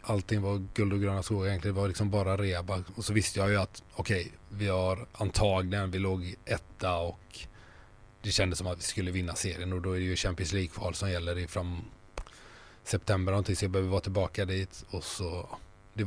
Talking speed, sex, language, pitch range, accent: 210 wpm, male, Swedish, 95-105 Hz, native